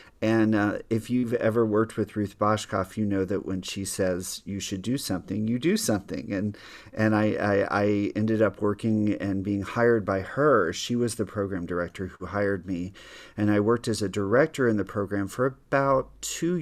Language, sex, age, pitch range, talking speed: English, male, 40-59, 95-110 Hz, 200 wpm